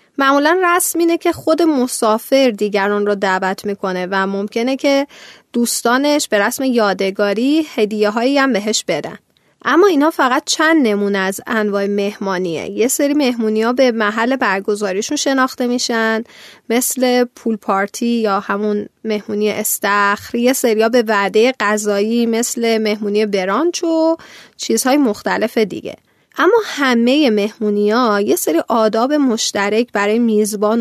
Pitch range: 210-265 Hz